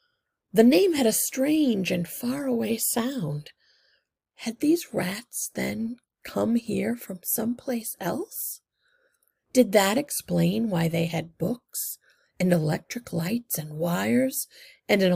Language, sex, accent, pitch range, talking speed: English, female, American, 175-270 Hz, 125 wpm